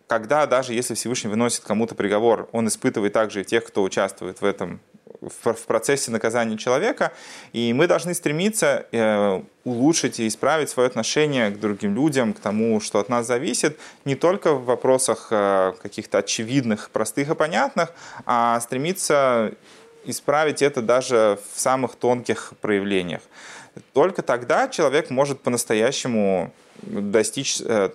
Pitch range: 105-130 Hz